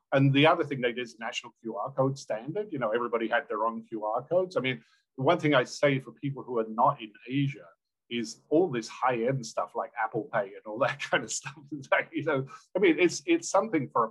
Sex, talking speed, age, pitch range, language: male, 240 wpm, 50-69, 115-145 Hz, English